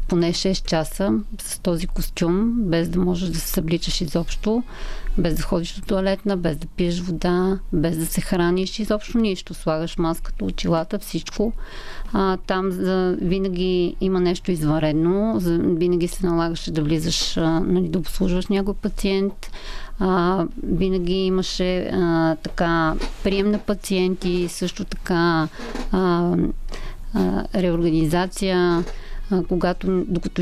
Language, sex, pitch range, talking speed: Bulgarian, female, 165-185 Hz, 110 wpm